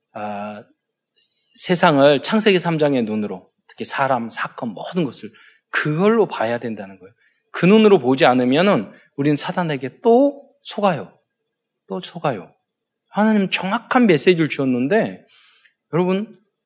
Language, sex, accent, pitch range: Korean, male, native, 130-205 Hz